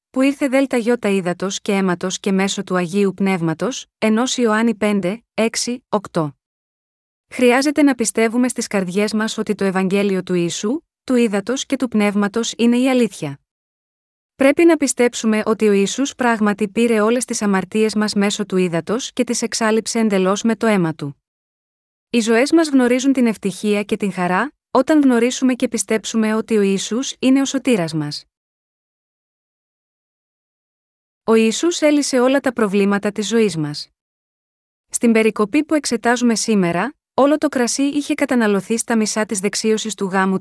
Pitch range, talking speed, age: 200-250 Hz, 150 wpm, 20-39